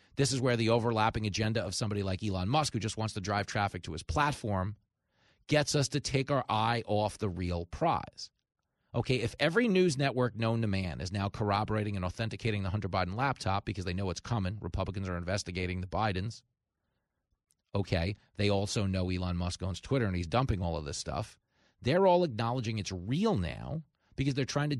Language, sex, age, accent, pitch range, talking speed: English, male, 30-49, American, 100-155 Hz, 200 wpm